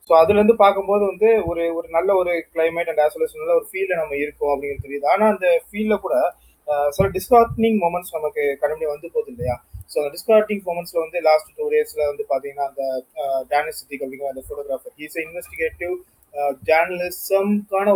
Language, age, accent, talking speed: Tamil, 30-49, native, 165 wpm